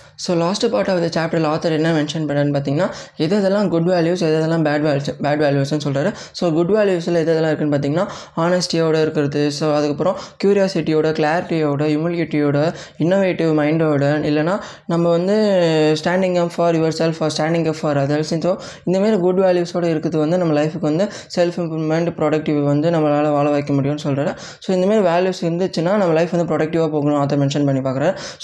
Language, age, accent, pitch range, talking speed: Tamil, 20-39, native, 150-180 Hz, 165 wpm